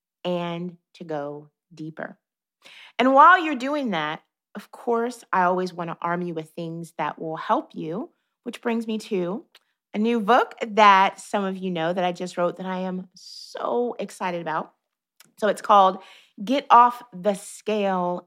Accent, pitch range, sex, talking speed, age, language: American, 170-205 Hz, female, 170 wpm, 30-49, English